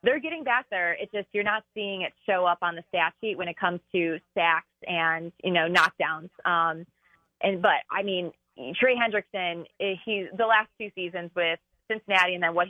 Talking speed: 200 wpm